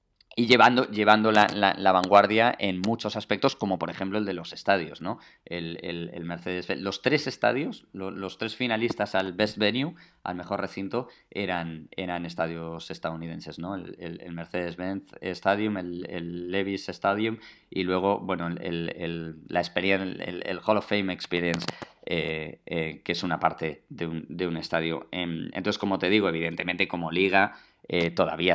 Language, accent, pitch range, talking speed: Spanish, Spanish, 85-95 Hz, 170 wpm